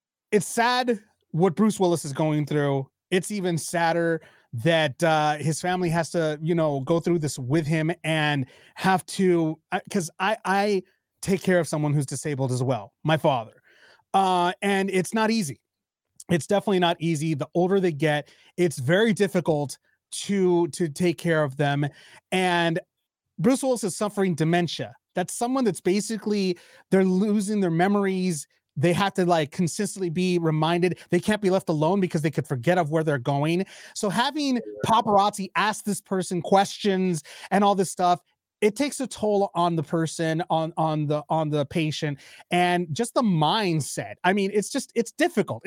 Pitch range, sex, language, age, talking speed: 160-200 Hz, male, English, 30-49, 170 wpm